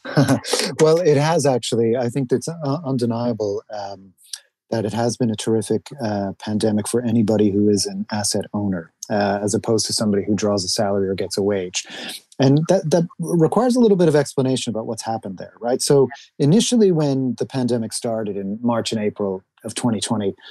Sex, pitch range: male, 105-135 Hz